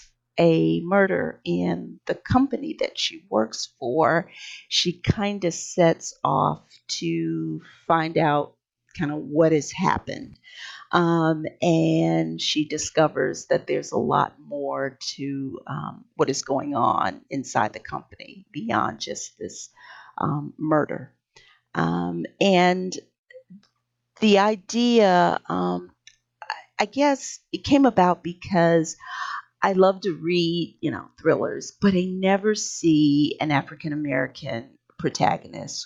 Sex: female